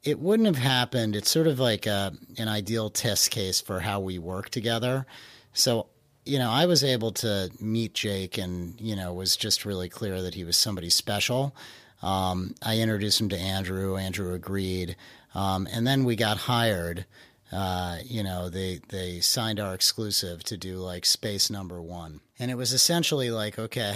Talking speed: 190 wpm